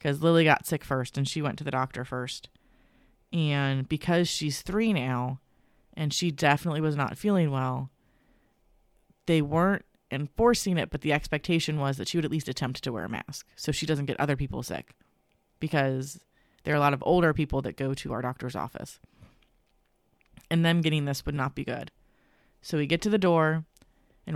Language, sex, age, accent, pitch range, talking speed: English, female, 30-49, American, 135-165 Hz, 190 wpm